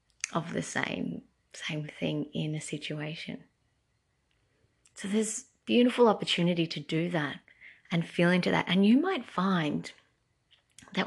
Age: 20-39